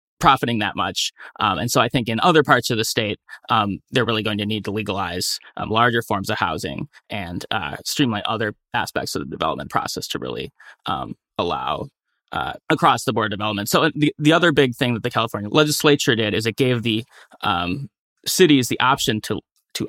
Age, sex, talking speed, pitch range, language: 20-39, male, 200 wpm, 110-135 Hz, English